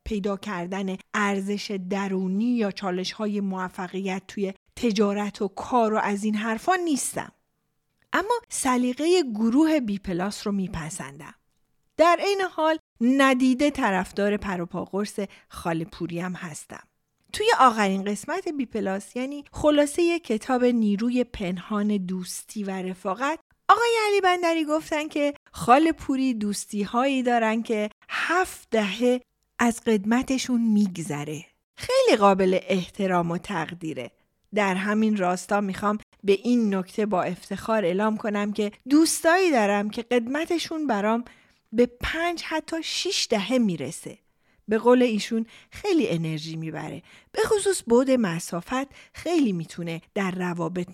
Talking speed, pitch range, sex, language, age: 120 wpm, 190-265 Hz, female, Persian, 40-59